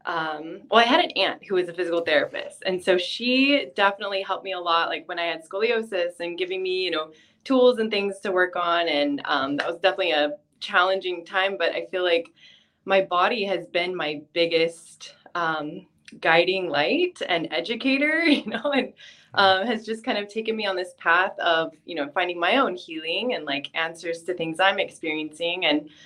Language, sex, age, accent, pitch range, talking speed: English, female, 20-39, American, 170-210 Hz, 200 wpm